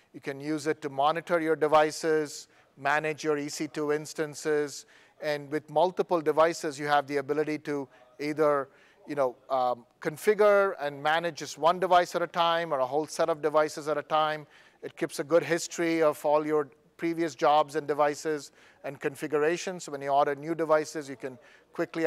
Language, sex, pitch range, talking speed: English, male, 145-165 Hz, 180 wpm